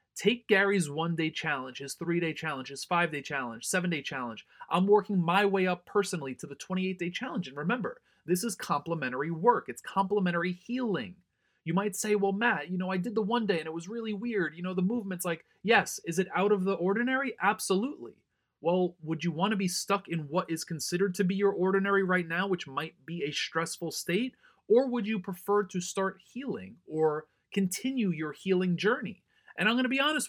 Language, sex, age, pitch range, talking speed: English, male, 30-49, 165-205 Hz, 200 wpm